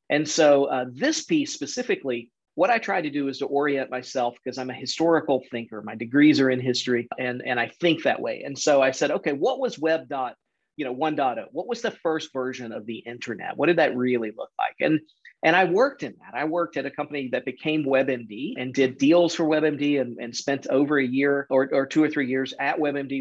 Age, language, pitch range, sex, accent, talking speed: 40-59, English, 125-155 Hz, male, American, 235 wpm